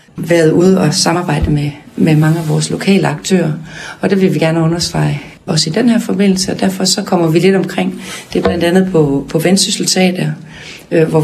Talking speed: 205 wpm